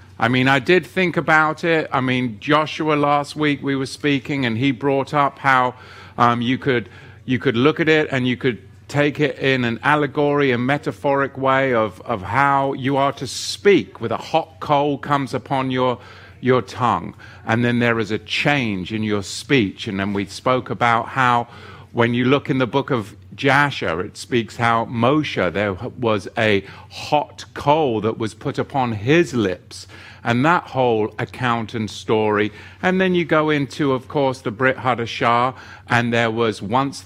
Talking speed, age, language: 185 wpm, 50-69, English